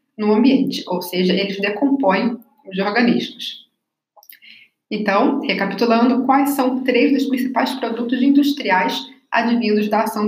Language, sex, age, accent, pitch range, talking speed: Portuguese, female, 20-39, Brazilian, 210-270 Hz, 115 wpm